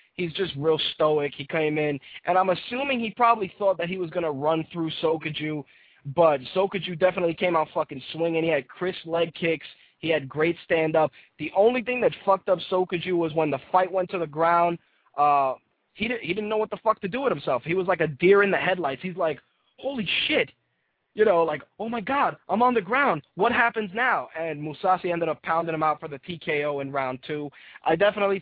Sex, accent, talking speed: male, American, 220 wpm